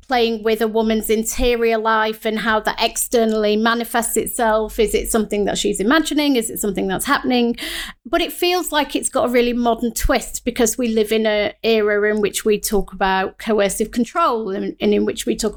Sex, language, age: female, English, 30-49